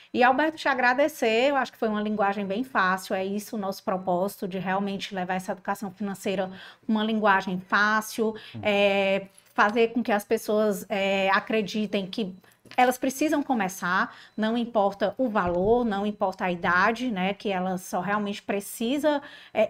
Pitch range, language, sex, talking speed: 200-235 Hz, Portuguese, female, 160 wpm